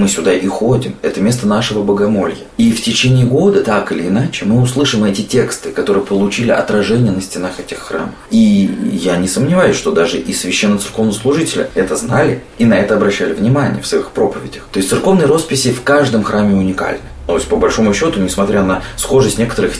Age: 20-39